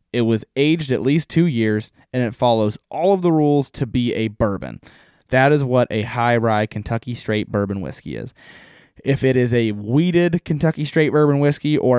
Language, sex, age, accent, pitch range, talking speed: English, male, 20-39, American, 105-140 Hz, 195 wpm